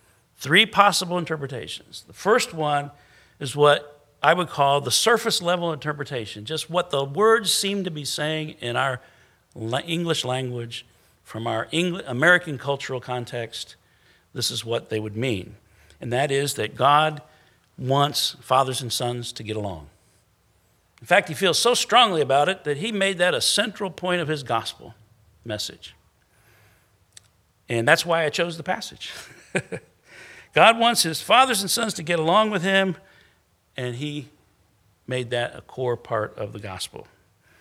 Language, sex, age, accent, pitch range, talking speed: English, male, 60-79, American, 110-165 Hz, 155 wpm